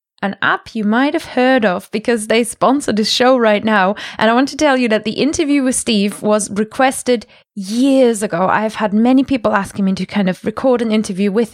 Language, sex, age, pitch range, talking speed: English, female, 20-39, 210-255 Hz, 220 wpm